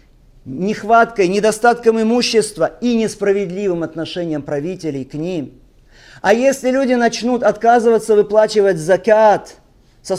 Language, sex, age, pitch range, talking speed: Russian, male, 50-69, 190-240 Hz, 100 wpm